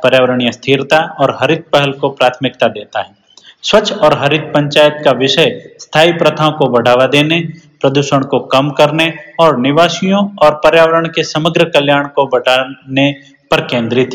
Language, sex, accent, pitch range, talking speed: Hindi, male, native, 145-170 Hz, 150 wpm